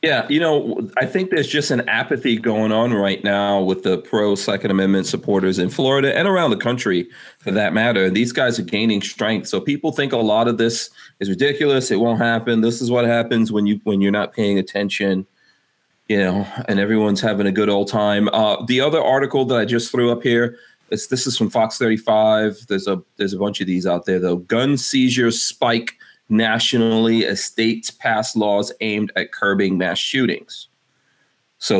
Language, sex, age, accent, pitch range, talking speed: English, male, 30-49, American, 100-120 Hz, 200 wpm